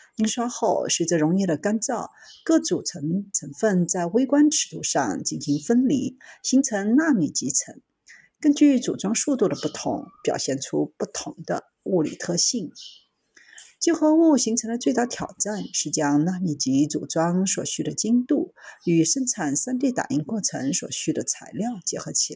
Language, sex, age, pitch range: Chinese, female, 50-69, 165-270 Hz